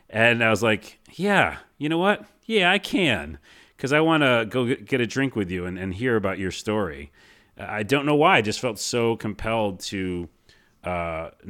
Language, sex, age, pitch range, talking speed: English, male, 30-49, 90-120 Hz, 200 wpm